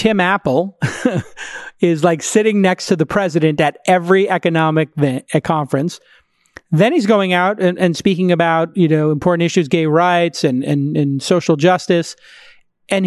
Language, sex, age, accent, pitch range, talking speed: English, male, 40-59, American, 165-220 Hz, 155 wpm